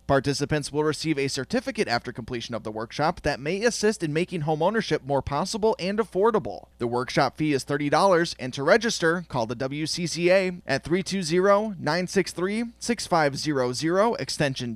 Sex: male